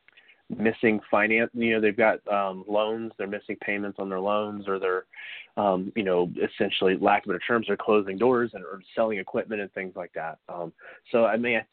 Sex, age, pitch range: male, 20-39, 95-110 Hz